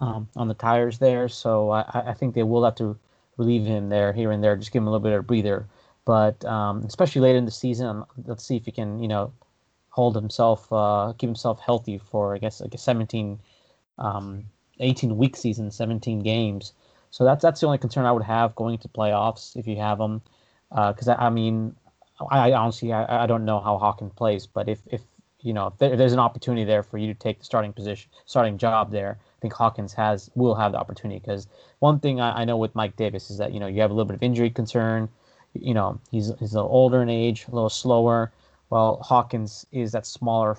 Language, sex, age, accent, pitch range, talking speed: English, male, 30-49, American, 105-120 Hz, 230 wpm